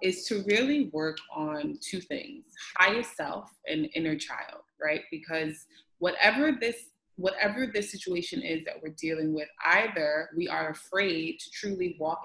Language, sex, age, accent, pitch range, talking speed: English, female, 20-39, American, 155-210 Hz, 150 wpm